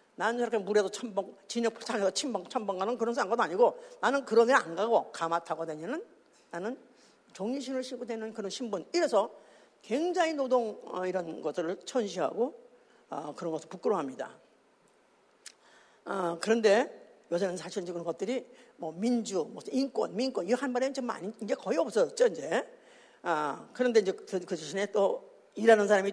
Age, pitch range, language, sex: 50-69, 195-290 Hz, Korean, female